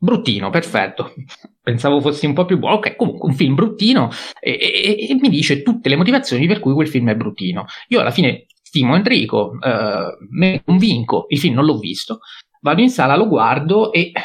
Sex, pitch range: male, 125-180 Hz